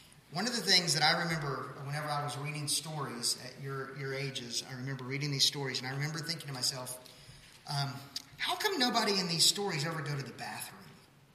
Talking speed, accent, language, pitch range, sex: 205 wpm, American, English, 140-185 Hz, male